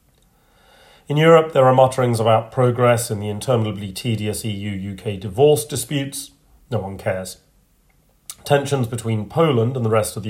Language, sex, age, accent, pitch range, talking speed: English, male, 40-59, British, 105-130 Hz, 145 wpm